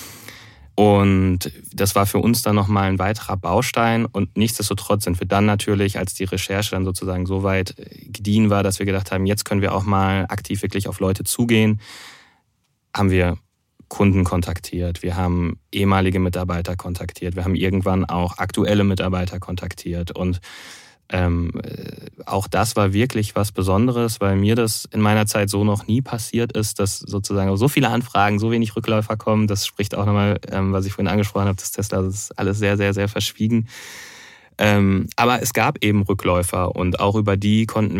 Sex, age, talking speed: male, 20-39, 175 wpm